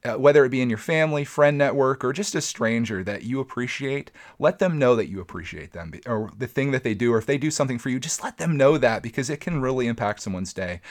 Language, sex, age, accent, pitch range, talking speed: English, male, 30-49, American, 105-135 Hz, 265 wpm